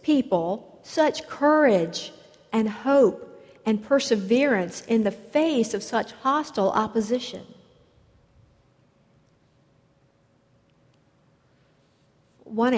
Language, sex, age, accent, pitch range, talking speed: English, female, 50-69, American, 195-235 Hz, 70 wpm